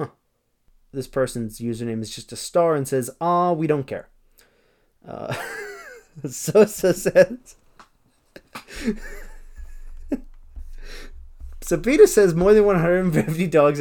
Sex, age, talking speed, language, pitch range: male, 20-39, 105 wpm, English, 135-200 Hz